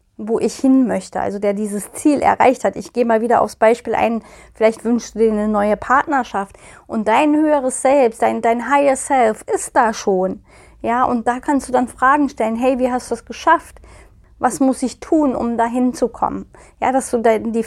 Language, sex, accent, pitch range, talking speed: German, female, German, 215-255 Hz, 205 wpm